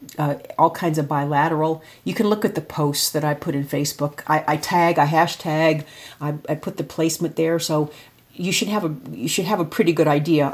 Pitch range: 145-170 Hz